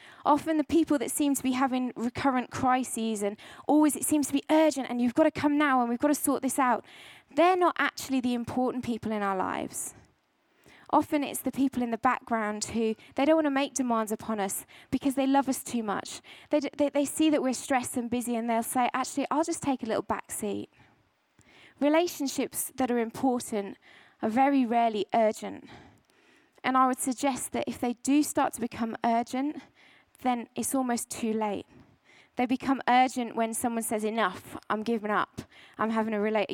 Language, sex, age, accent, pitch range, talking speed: English, female, 20-39, British, 225-280 Hz, 200 wpm